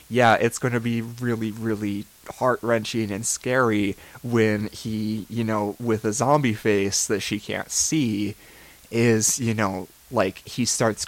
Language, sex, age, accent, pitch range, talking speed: English, male, 20-39, American, 105-120 Hz, 150 wpm